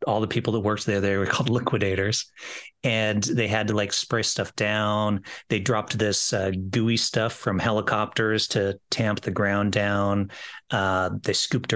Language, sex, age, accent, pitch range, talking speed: English, male, 30-49, American, 100-120 Hz, 175 wpm